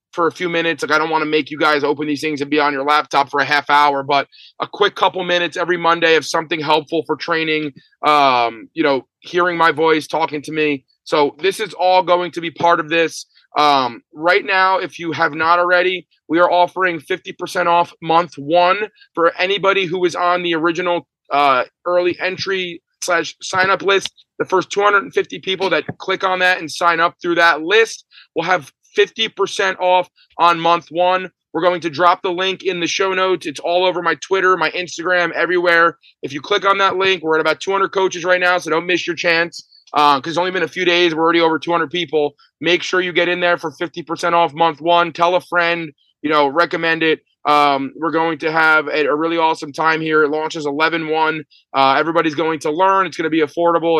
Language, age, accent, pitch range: English, 30-49, American, 155-180 Hz